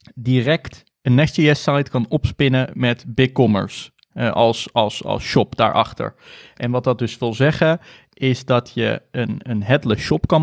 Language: Dutch